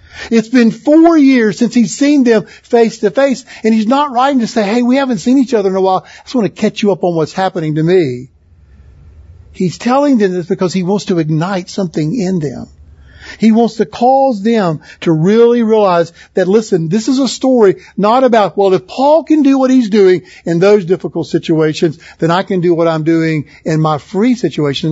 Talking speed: 215 wpm